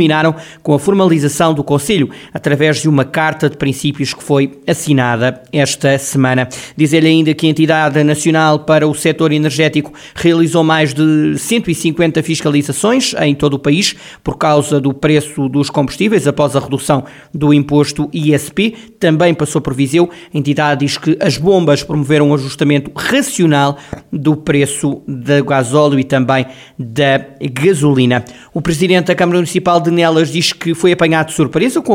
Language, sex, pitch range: Portuguese, male, 140-165 Hz